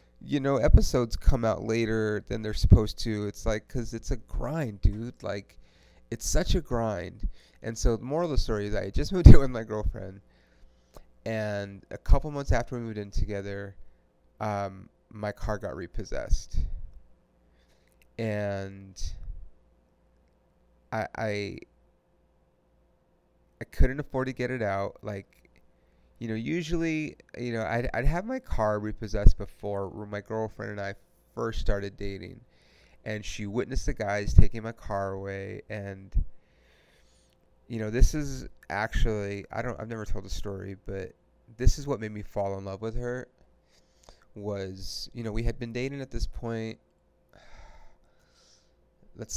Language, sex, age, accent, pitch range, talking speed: English, male, 30-49, American, 95-115 Hz, 150 wpm